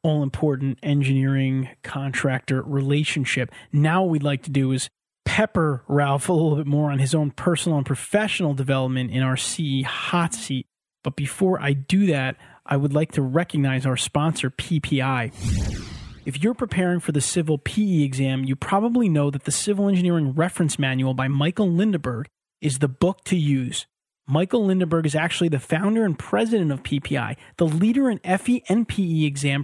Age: 30-49